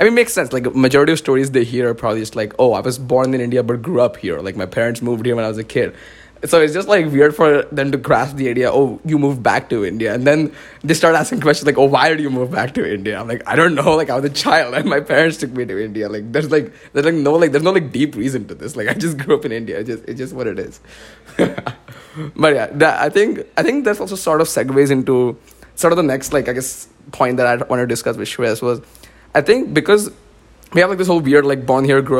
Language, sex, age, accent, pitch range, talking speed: English, male, 20-39, Indian, 120-150 Hz, 285 wpm